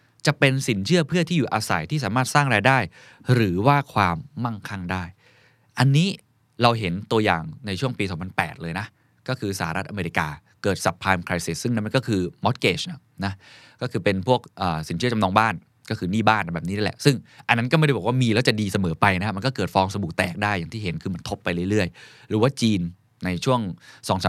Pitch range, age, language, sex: 95-130 Hz, 20-39, Thai, male